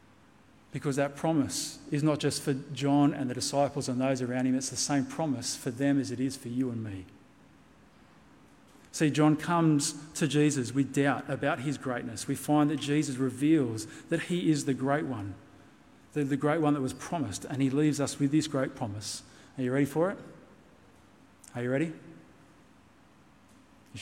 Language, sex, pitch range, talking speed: English, male, 125-150 Hz, 180 wpm